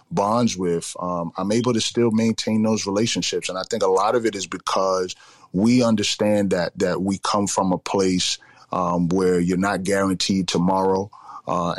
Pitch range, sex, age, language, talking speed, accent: 90-110 Hz, male, 30-49, English, 180 wpm, American